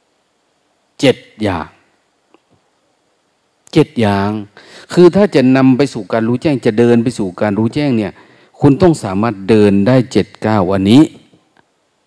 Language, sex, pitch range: Thai, male, 100-125 Hz